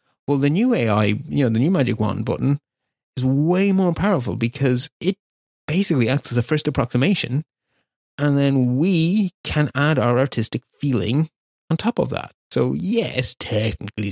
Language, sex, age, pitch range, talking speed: English, male, 30-49, 110-145 Hz, 160 wpm